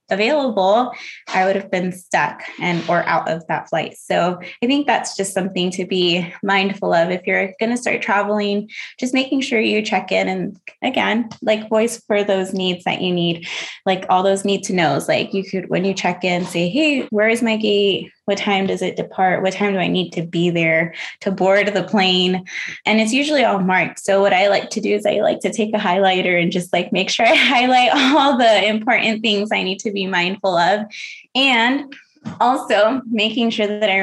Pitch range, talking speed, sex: 190-235 Hz, 215 wpm, female